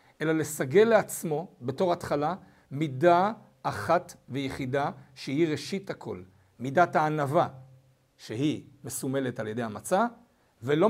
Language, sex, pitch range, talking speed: Hebrew, male, 130-185 Hz, 105 wpm